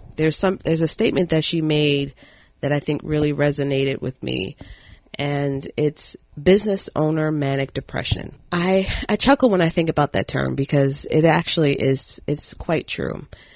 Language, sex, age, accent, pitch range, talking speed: English, female, 30-49, American, 140-170 Hz, 165 wpm